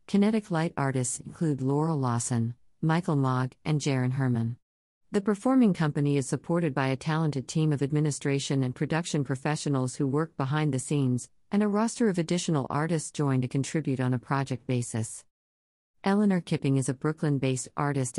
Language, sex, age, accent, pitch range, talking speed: English, female, 50-69, American, 130-160 Hz, 165 wpm